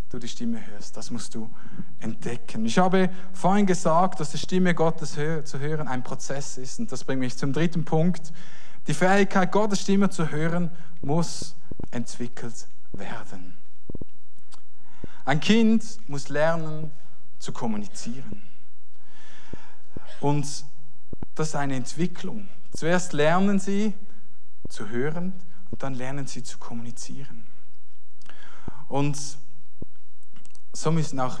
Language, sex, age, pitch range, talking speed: German, male, 50-69, 140-185 Hz, 120 wpm